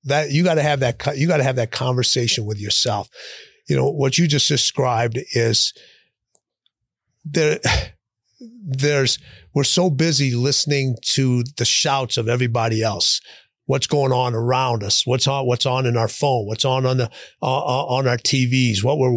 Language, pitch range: English, 115-140 Hz